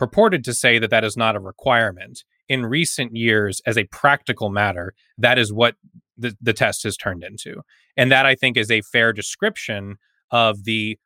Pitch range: 110-160 Hz